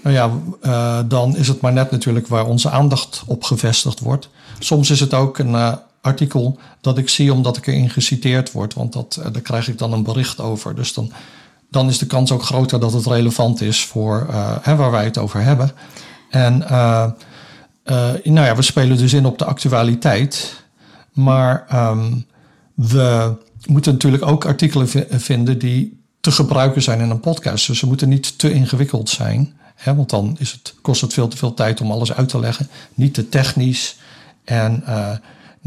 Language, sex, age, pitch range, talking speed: Dutch, male, 50-69, 120-140 Hz, 190 wpm